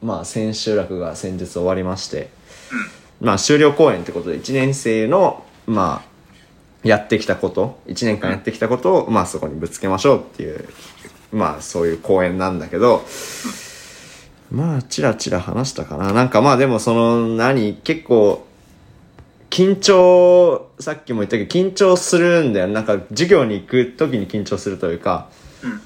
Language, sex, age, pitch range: Japanese, male, 20-39, 95-130 Hz